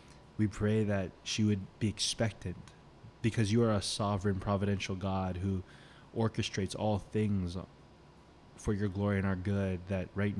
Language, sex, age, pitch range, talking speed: English, male, 20-39, 95-110 Hz, 150 wpm